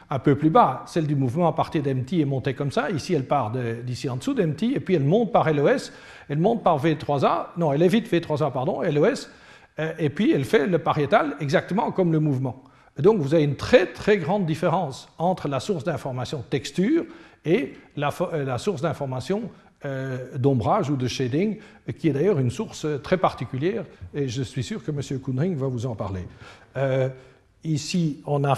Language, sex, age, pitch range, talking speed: French, male, 50-69, 130-165 Hz, 200 wpm